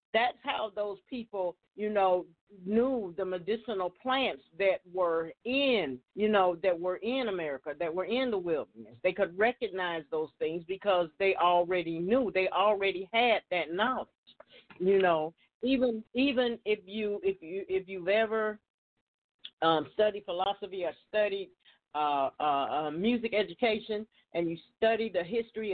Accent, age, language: American, 40-59, English